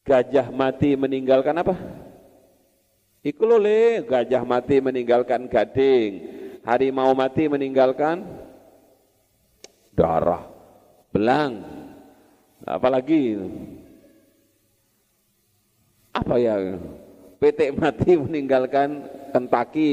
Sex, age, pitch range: male, 40-59, 125-190 Hz